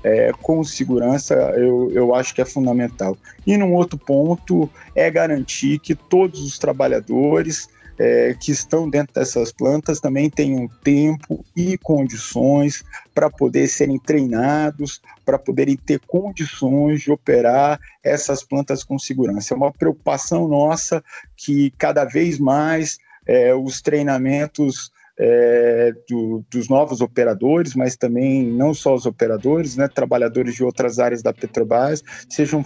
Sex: male